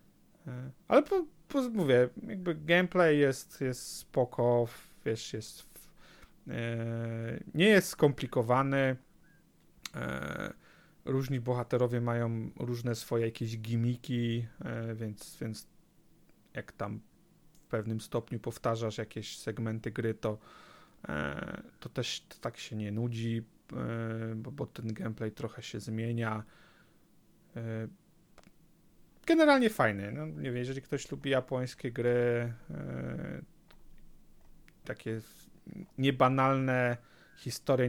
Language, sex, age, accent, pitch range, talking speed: Polish, male, 30-49, native, 115-135 Hz, 100 wpm